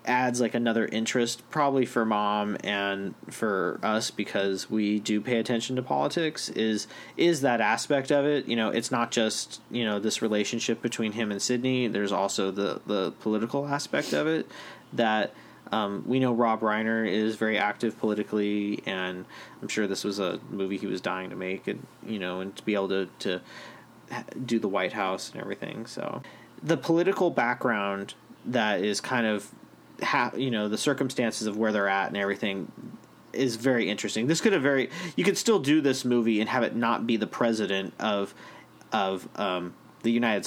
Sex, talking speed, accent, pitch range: male, 185 wpm, American, 105-125 Hz